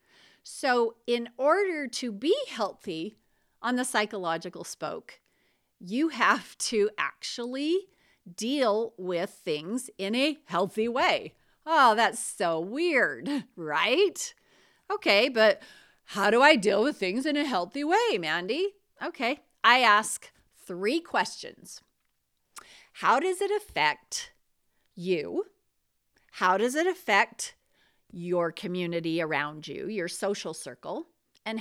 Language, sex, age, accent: English, female, 40-59, American